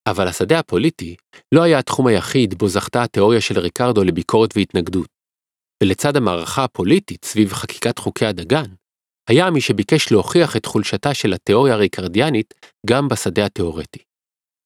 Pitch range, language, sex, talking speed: 100-135 Hz, Hebrew, male, 135 wpm